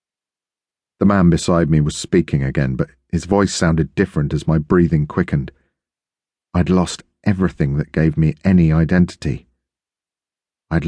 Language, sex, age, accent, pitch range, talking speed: English, male, 40-59, British, 75-90 Hz, 140 wpm